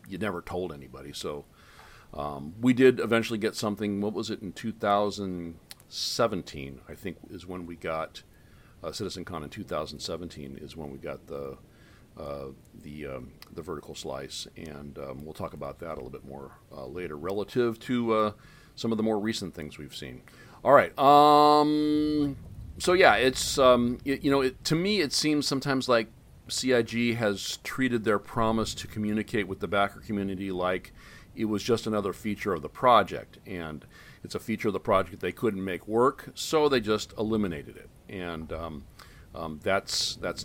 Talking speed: 175 wpm